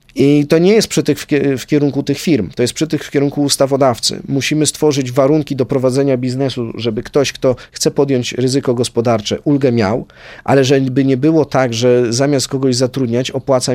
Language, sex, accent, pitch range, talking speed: Polish, male, native, 120-145 Hz, 185 wpm